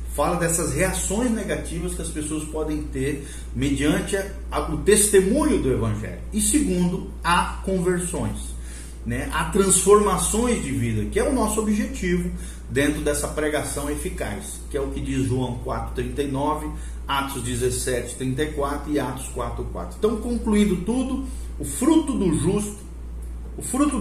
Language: Portuguese